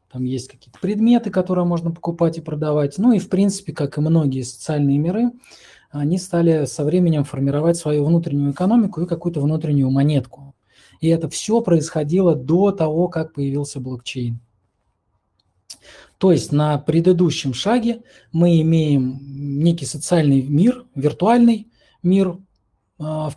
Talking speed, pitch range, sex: 135 wpm, 140-175 Hz, male